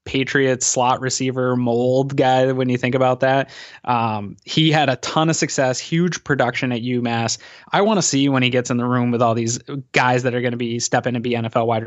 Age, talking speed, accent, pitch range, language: 20-39, 225 wpm, American, 120-135 Hz, English